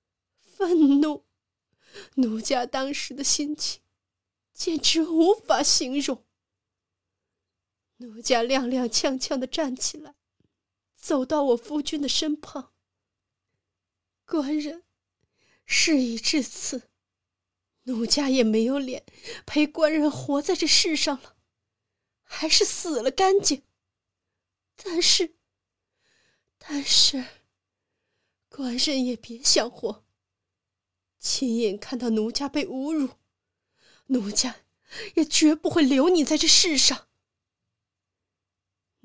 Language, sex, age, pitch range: Chinese, female, 30-49, 225-300 Hz